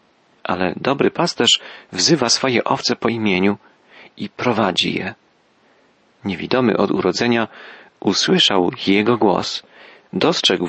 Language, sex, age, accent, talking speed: Polish, male, 40-59, native, 100 wpm